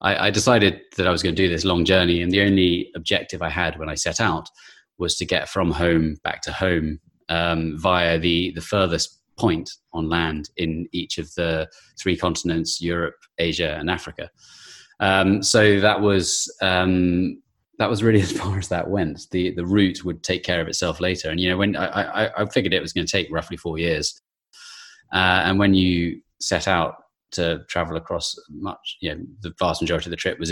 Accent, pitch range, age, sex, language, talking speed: British, 85-100 Hz, 20-39, male, English, 205 wpm